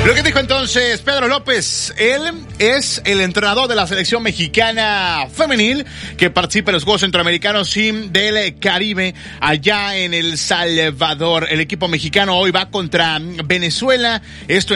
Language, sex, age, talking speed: Spanish, male, 30-49, 145 wpm